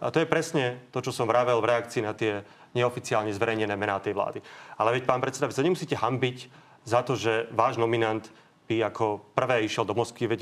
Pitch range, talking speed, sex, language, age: 110-135 Hz, 215 wpm, male, Slovak, 30-49